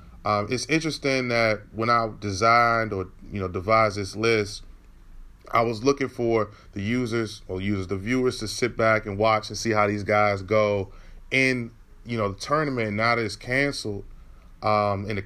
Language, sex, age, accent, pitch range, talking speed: English, male, 30-49, American, 100-130 Hz, 180 wpm